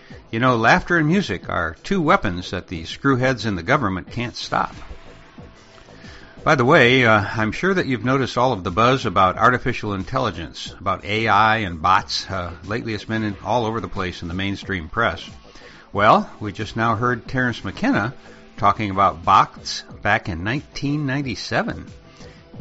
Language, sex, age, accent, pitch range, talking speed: English, male, 60-79, American, 100-130 Hz, 160 wpm